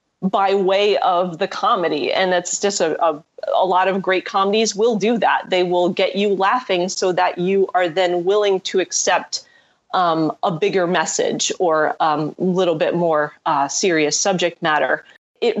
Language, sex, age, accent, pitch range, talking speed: English, female, 30-49, American, 175-215 Hz, 175 wpm